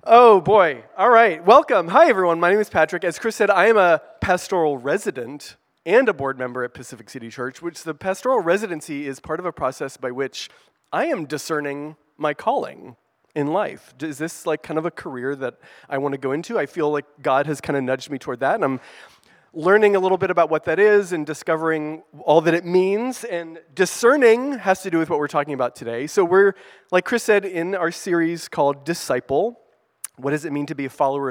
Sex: male